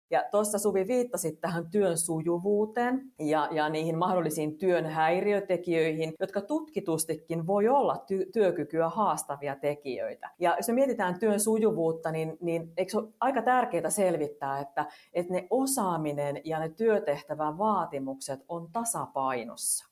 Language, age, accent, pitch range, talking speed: Finnish, 40-59, native, 145-190 Hz, 125 wpm